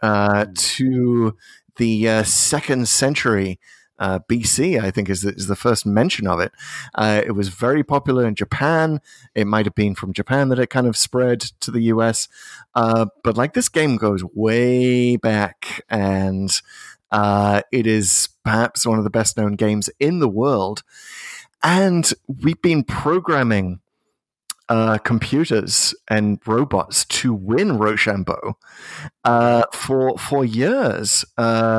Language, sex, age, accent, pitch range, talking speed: English, male, 30-49, British, 105-125 Hz, 140 wpm